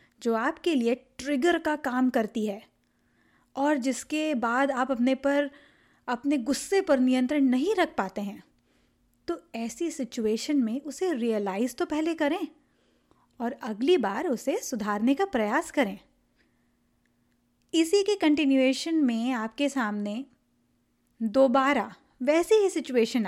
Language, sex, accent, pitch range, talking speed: Hindi, female, native, 230-295 Hz, 125 wpm